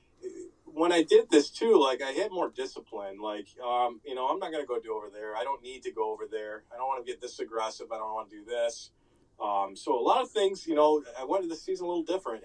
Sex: male